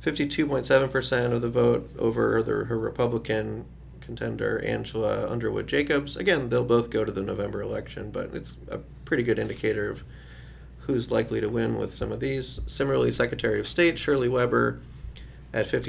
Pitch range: 110-135 Hz